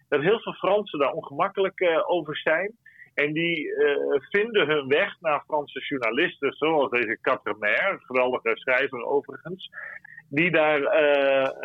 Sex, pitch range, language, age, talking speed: male, 140-195 Hz, Dutch, 40-59, 145 wpm